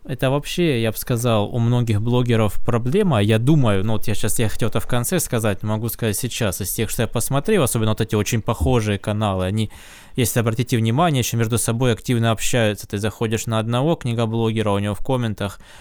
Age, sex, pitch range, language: 20-39, male, 100-120 Hz, Russian